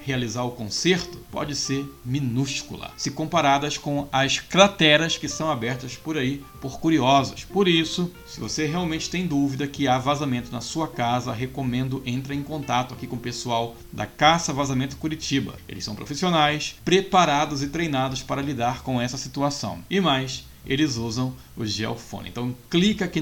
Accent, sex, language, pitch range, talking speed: Brazilian, male, Portuguese, 120-150 Hz, 165 wpm